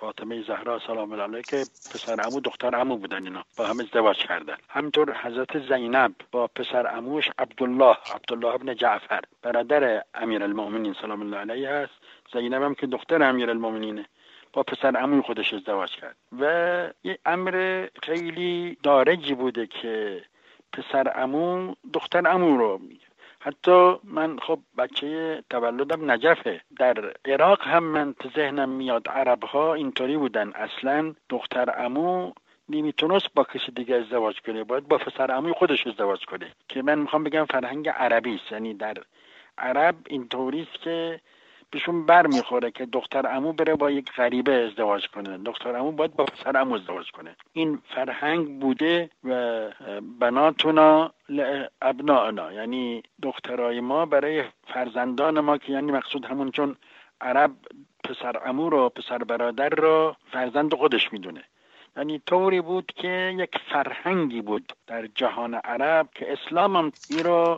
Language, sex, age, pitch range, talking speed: Persian, male, 60-79, 125-160 Hz, 145 wpm